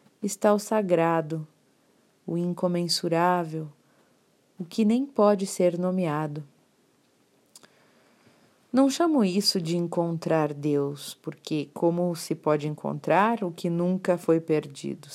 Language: Portuguese